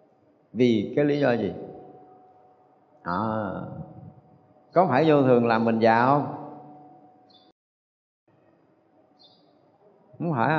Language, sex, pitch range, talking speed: Vietnamese, male, 120-165 Hz, 90 wpm